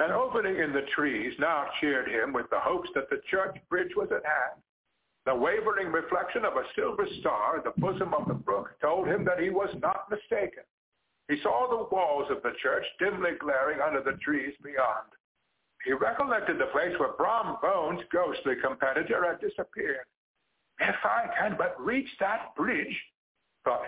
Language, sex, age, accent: English, male, 60-79, American